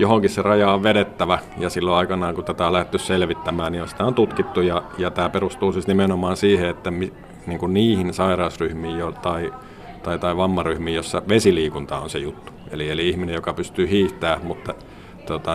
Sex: male